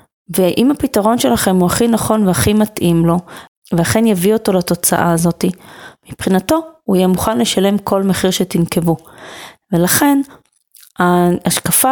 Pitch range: 180-225 Hz